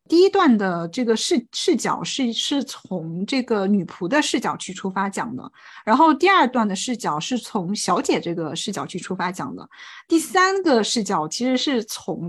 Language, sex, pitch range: Chinese, female, 210-295 Hz